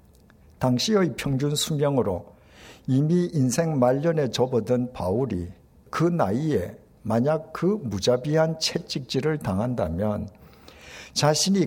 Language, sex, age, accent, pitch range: Korean, male, 60-79, native, 105-160 Hz